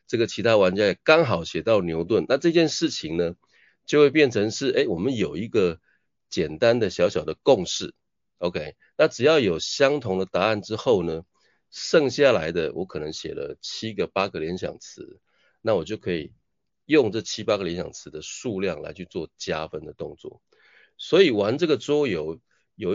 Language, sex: Chinese, male